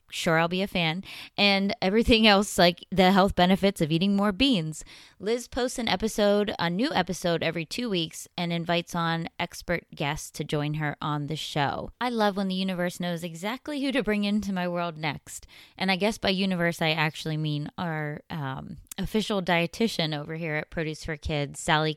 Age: 20-39